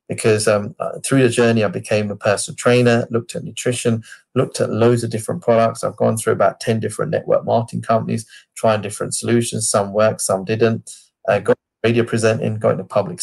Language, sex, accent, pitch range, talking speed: English, male, British, 110-125 Hz, 190 wpm